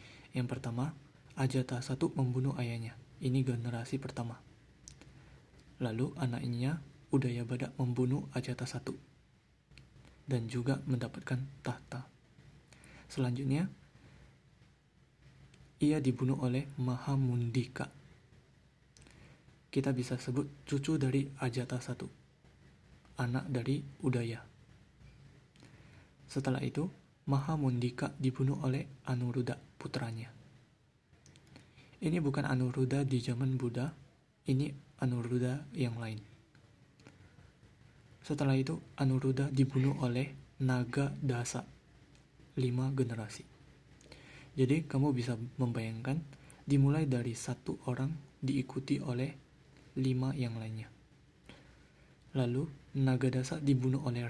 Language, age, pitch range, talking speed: Indonesian, 20-39, 125-140 Hz, 85 wpm